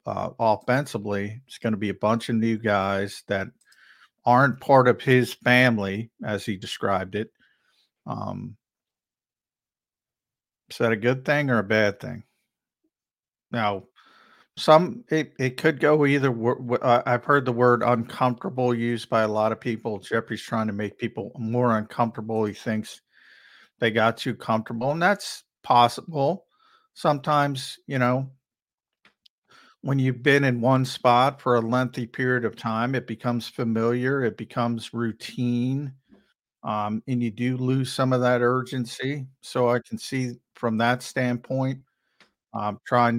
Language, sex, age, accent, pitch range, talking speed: English, male, 50-69, American, 115-130 Hz, 145 wpm